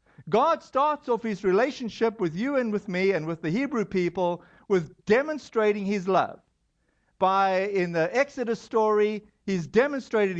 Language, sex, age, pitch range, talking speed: English, male, 50-69, 185-230 Hz, 150 wpm